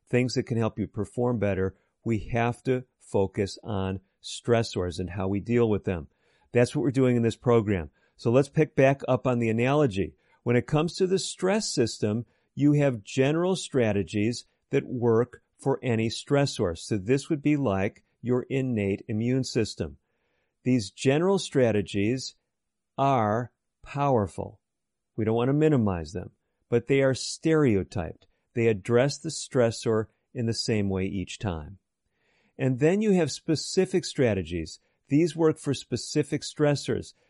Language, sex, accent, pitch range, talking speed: English, male, American, 105-140 Hz, 155 wpm